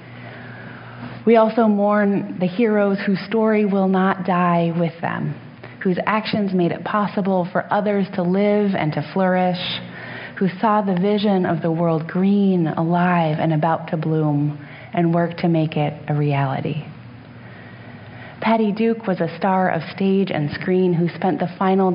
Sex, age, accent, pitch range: female, 30-49, American, 150-190 Hz